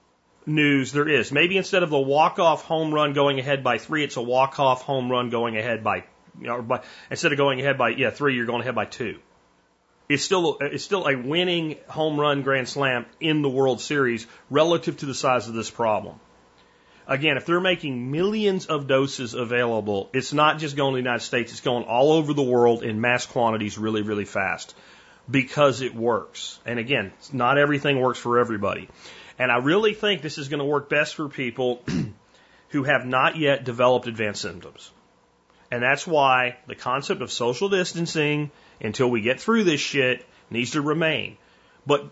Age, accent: 40-59, American